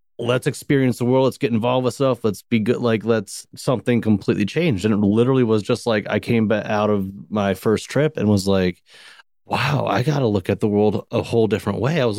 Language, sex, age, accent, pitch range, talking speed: English, male, 30-49, American, 100-125 Hz, 230 wpm